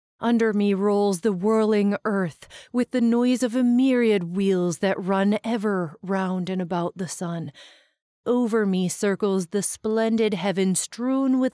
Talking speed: 150 wpm